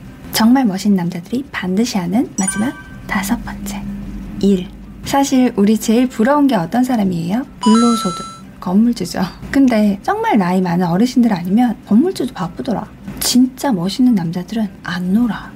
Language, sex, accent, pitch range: Korean, female, native, 195-255 Hz